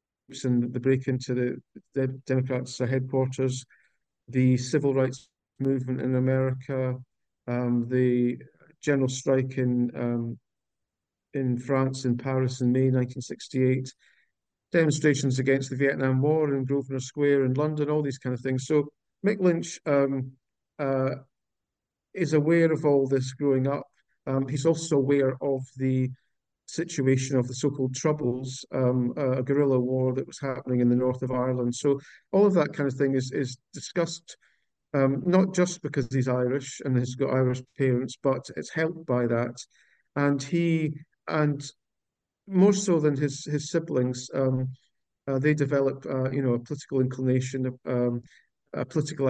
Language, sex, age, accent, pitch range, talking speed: English, male, 50-69, British, 125-145 Hz, 155 wpm